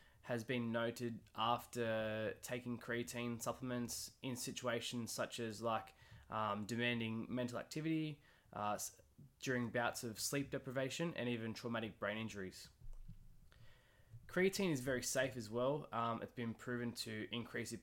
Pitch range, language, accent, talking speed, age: 110-125 Hz, English, Australian, 135 wpm, 20-39